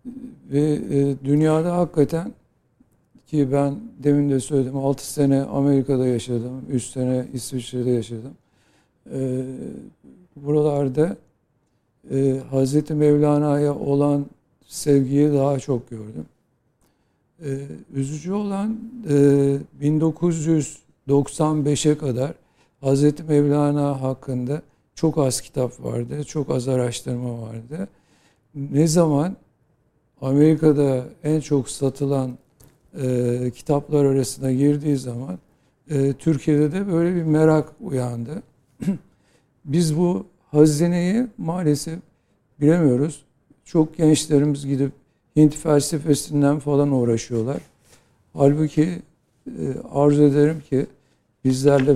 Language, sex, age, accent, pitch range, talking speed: Turkish, male, 60-79, native, 130-150 Hz, 85 wpm